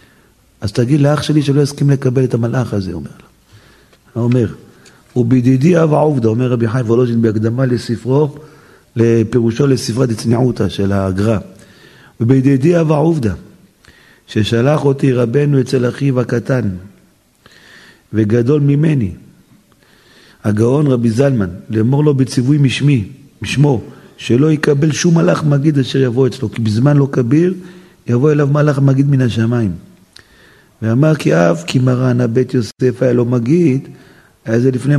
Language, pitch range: Hebrew, 115-145 Hz